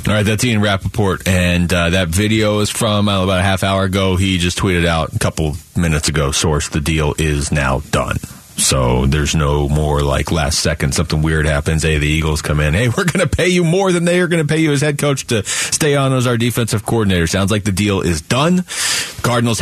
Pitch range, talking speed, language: 85-125 Hz, 230 wpm, English